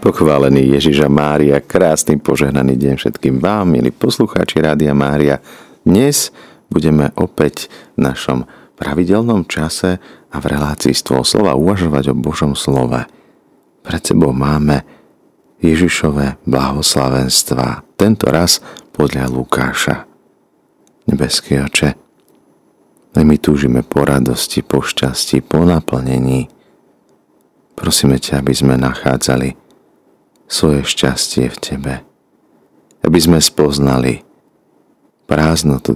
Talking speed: 100 wpm